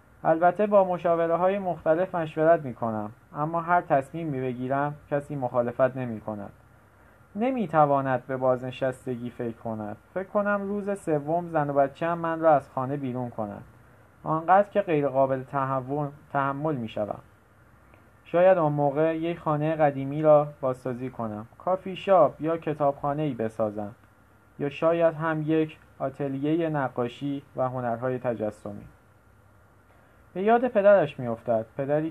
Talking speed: 130 wpm